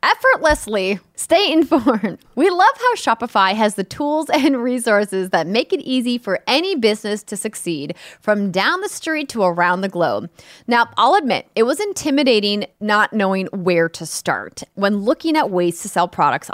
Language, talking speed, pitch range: English, 170 wpm, 185-270 Hz